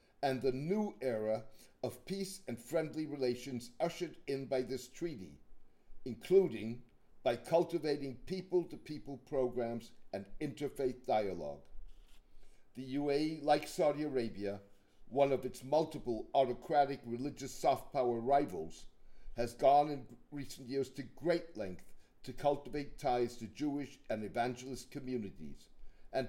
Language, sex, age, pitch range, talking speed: English, male, 60-79, 115-150 Hz, 120 wpm